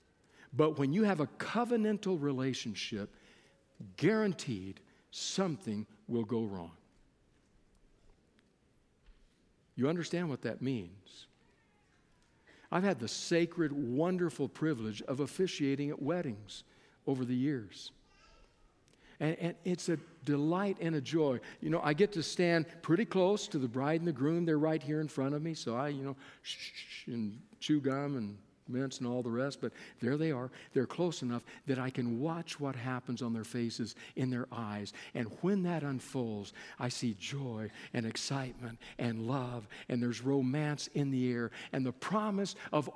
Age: 60-79